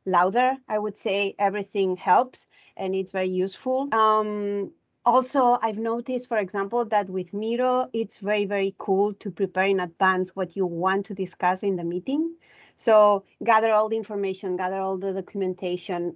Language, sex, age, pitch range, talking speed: English, female, 30-49, 185-220 Hz, 165 wpm